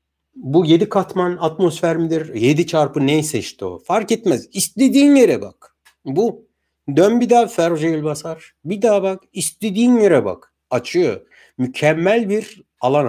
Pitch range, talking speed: 105-165 Hz, 140 wpm